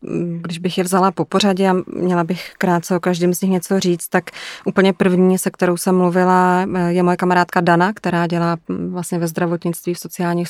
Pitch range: 170-185 Hz